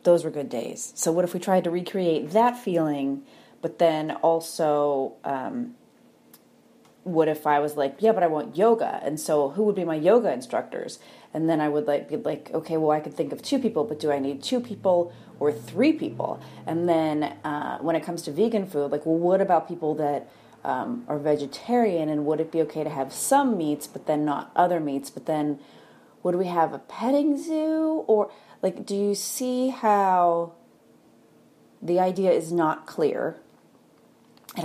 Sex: female